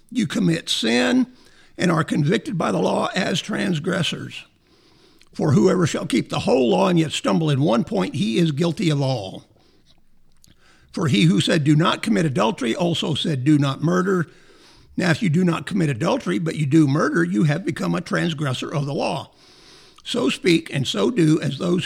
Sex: male